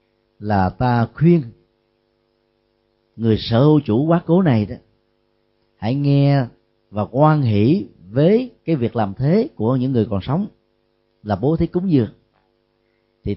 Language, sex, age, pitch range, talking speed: Vietnamese, male, 40-59, 95-135 Hz, 145 wpm